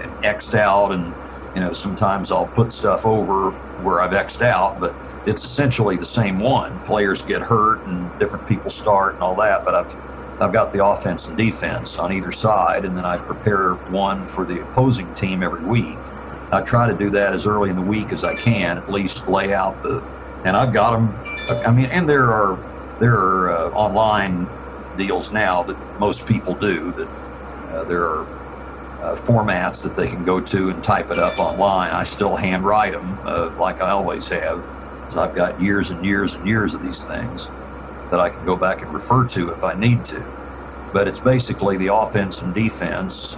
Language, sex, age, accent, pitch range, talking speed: English, male, 60-79, American, 85-105 Hz, 200 wpm